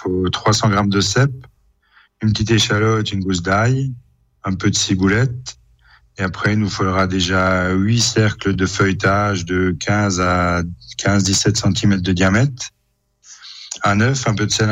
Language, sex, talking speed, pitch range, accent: French, male, 150 wpm, 95-110 Hz, French